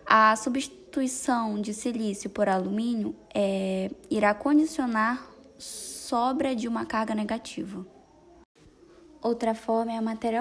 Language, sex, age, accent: Portuguese, female, 10-29, Brazilian